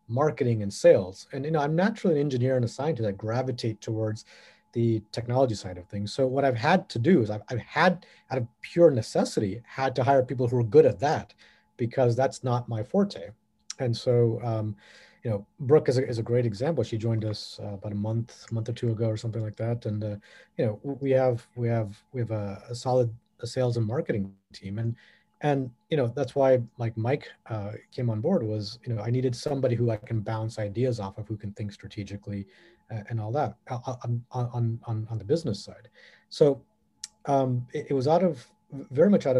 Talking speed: 215 wpm